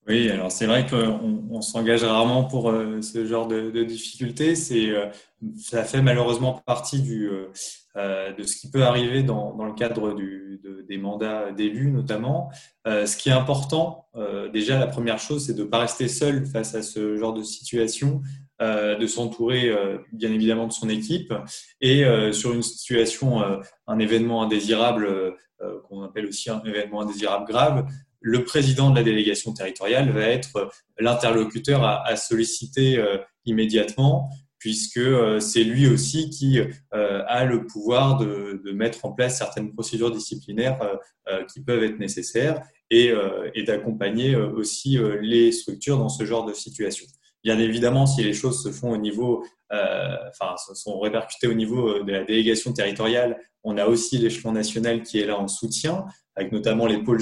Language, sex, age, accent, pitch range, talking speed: French, male, 20-39, French, 105-125 Hz, 155 wpm